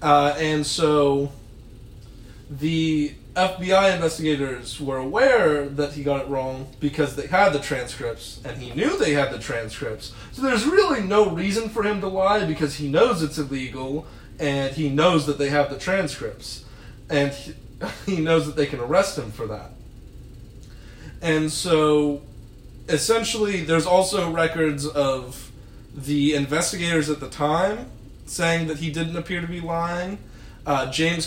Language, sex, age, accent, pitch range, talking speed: English, male, 30-49, American, 135-165 Hz, 150 wpm